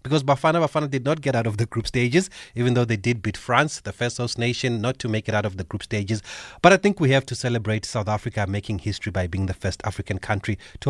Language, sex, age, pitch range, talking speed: English, male, 30-49, 105-145 Hz, 265 wpm